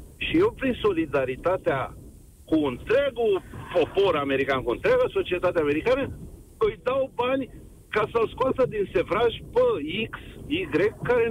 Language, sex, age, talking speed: Romanian, male, 50-69, 125 wpm